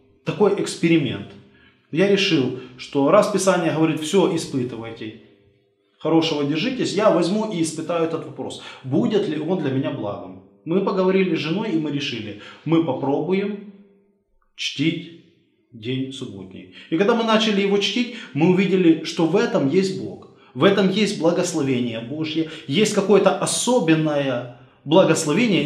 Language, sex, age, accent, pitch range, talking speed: Russian, male, 20-39, native, 135-190 Hz, 135 wpm